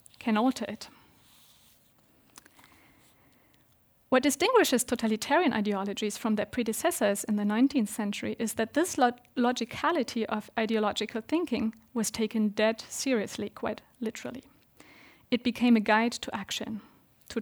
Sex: female